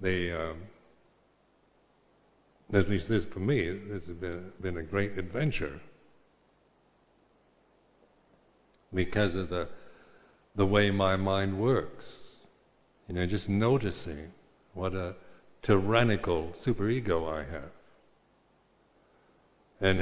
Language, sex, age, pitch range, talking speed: English, male, 60-79, 90-105 Hz, 95 wpm